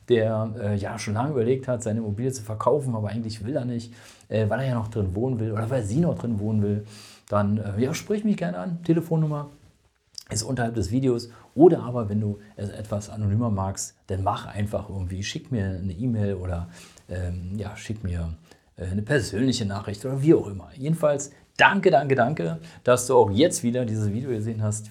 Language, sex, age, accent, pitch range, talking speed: German, male, 40-59, German, 100-125 Hz, 205 wpm